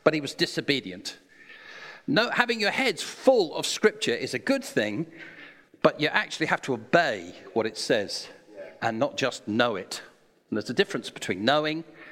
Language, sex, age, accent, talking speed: English, male, 50-69, British, 170 wpm